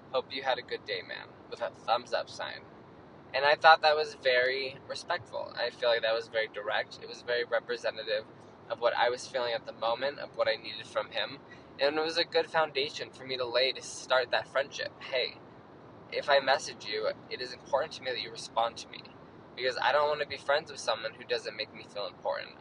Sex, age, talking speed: male, 20-39, 230 wpm